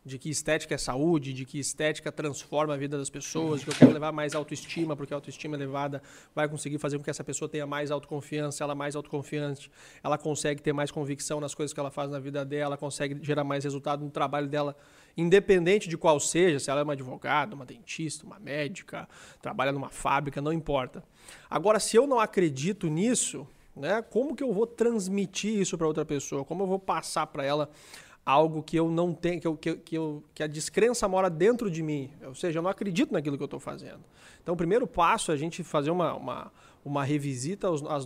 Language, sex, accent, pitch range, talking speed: Portuguese, male, Brazilian, 145-175 Hz, 205 wpm